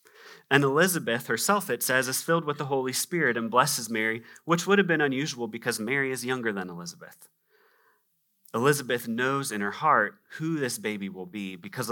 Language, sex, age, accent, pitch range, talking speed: English, male, 30-49, American, 95-130 Hz, 180 wpm